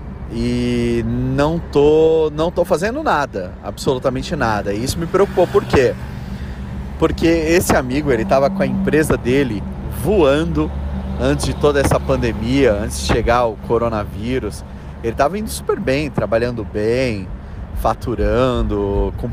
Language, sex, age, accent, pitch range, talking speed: Portuguese, male, 30-49, Brazilian, 85-125 Hz, 135 wpm